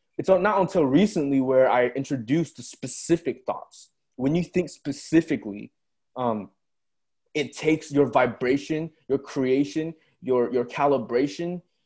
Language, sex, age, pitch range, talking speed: English, male, 20-39, 115-150 Hz, 120 wpm